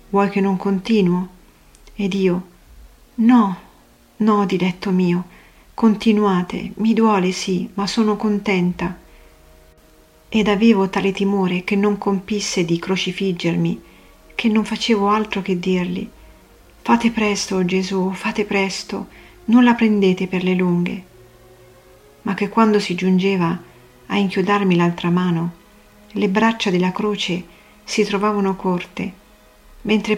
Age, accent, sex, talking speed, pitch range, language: 40-59, native, female, 120 wpm, 180-210 Hz, Italian